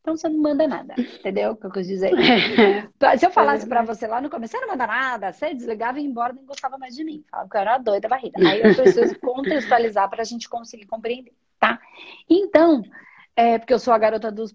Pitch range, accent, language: 220-300 Hz, Brazilian, Portuguese